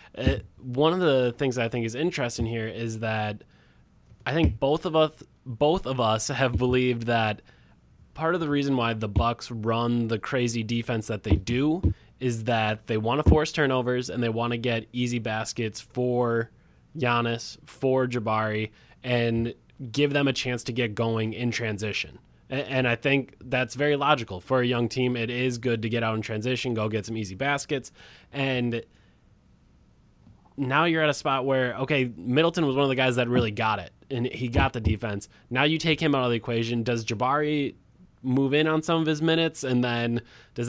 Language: English